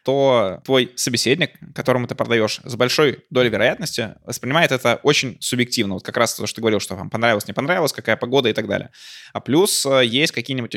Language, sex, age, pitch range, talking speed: Russian, male, 20-39, 110-130 Hz, 195 wpm